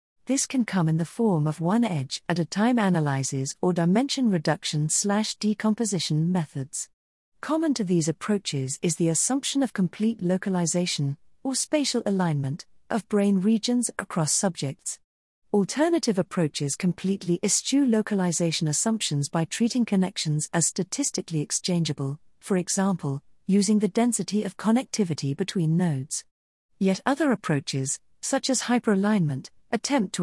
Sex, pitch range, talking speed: female, 155-220 Hz, 130 wpm